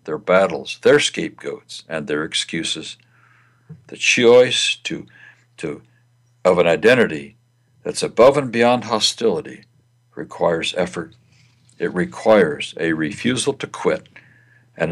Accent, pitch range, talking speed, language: American, 110-125 Hz, 115 wpm, English